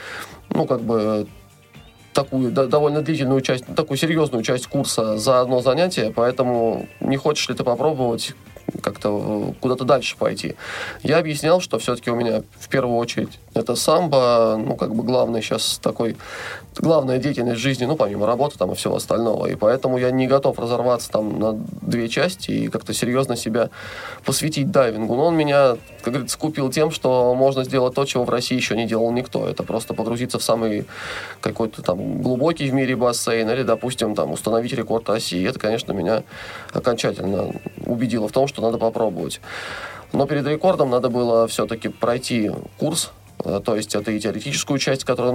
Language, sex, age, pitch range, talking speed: Russian, male, 20-39, 115-135 Hz, 170 wpm